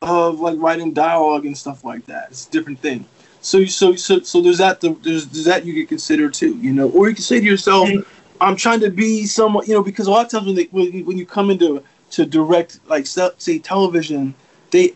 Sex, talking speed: male, 235 wpm